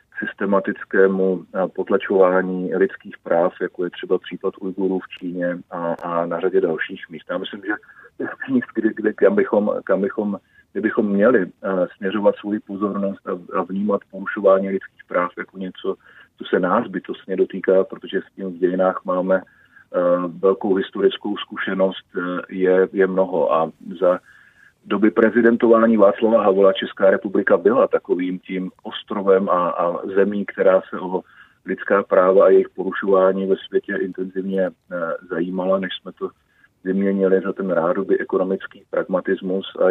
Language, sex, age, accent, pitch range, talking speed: Czech, male, 40-59, native, 90-100 Hz, 130 wpm